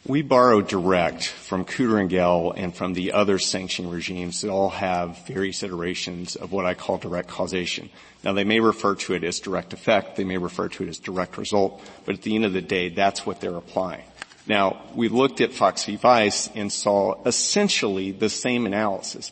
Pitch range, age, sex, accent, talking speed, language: 95-120 Hz, 40-59, male, American, 200 wpm, English